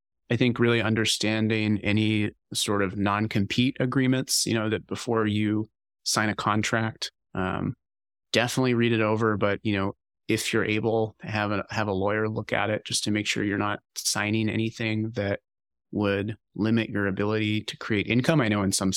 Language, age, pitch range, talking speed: English, 30-49, 100-115 Hz, 180 wpm